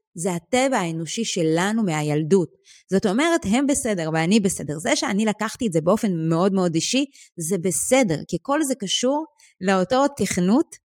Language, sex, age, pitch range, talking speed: Hebrew, female, 30-49, 170-265 Hz, 155 wpm